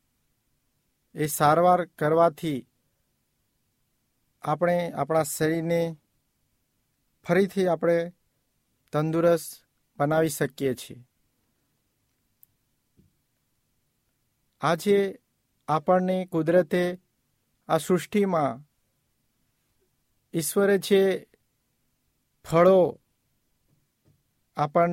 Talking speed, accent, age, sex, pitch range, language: 40 wpm, native, 50-69, male, 150-185 Hz, Hindi